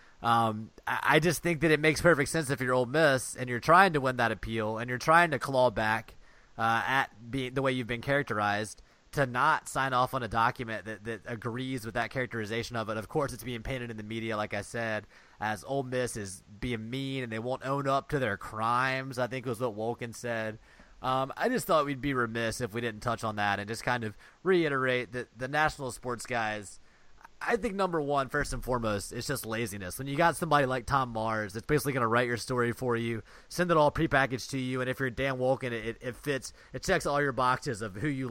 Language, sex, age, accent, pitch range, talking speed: English, male, 20-39, American, 115-135 Hz, 235 wpm